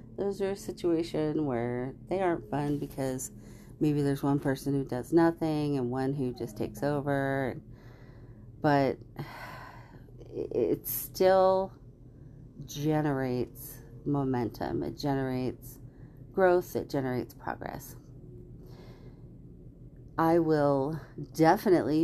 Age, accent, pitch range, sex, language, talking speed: 40-59, American, 125-155 Hz, female, English, 100 wpm